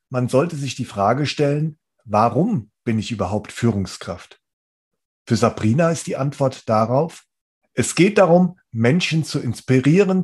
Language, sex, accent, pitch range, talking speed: German, male, German, 120-160 Hz, 135 wpm